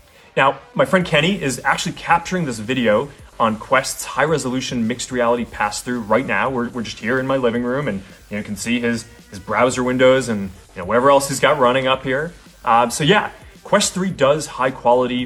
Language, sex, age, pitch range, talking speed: Romanian, male, 20-39, 115-145 Hz, 195 wpm